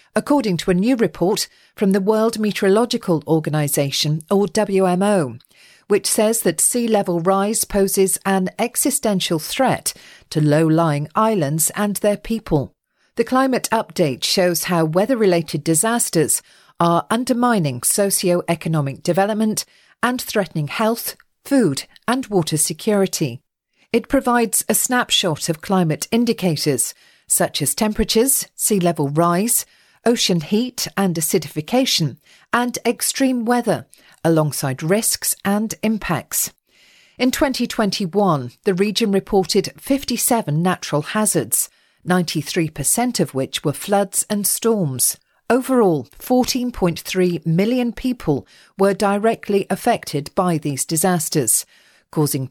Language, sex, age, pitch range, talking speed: English, female, 40-59, 165-225 Hz, 110 wpm